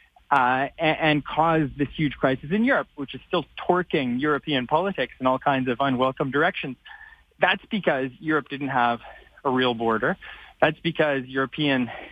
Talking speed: 160 wpm